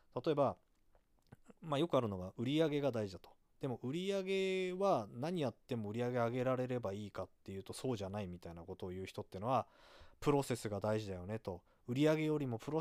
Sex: male